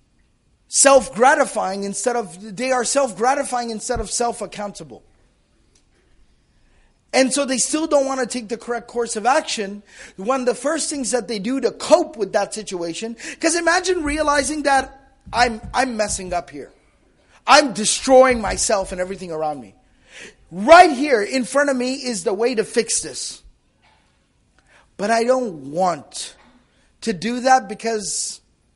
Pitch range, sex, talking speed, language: 185-260 Hz, male, 150 wpm, English